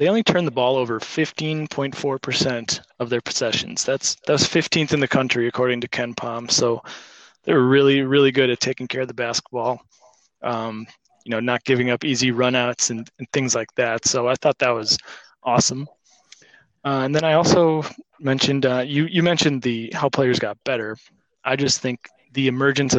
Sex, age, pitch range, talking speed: male, 20-39, 120-145 Hz, 185 wpm